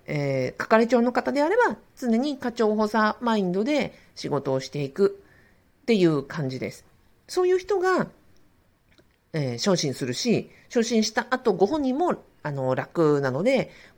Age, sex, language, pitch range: 50-69, female, Japanese, 160-260 Hz